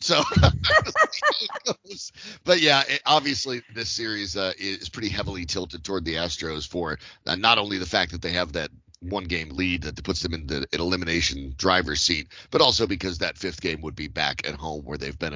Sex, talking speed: male, 200 wpm